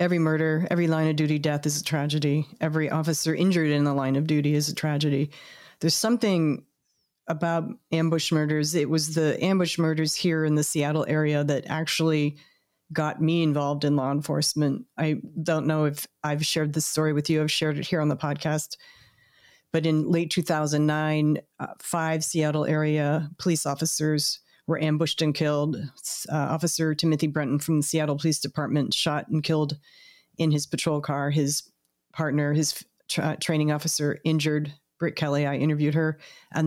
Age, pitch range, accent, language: 30-49, 150-165 Hz, American, English